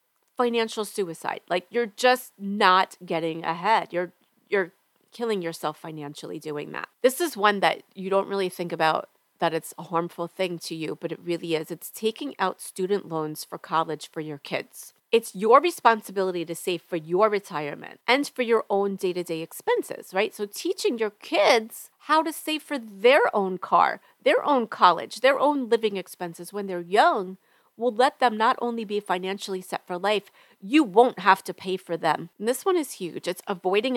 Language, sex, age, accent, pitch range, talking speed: English, female, 40-59, American, 175-235 Hz, 185 wpm